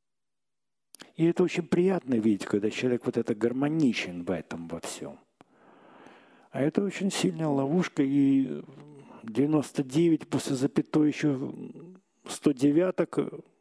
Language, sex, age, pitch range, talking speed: Russian, male, 50-69, 115-160 Hz, 110 wpm